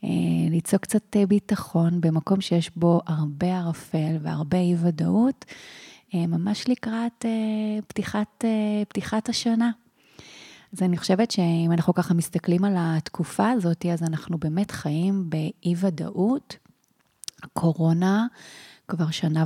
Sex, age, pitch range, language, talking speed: female, 30-49, 165-200 Hz, Hebrew, 110 wpm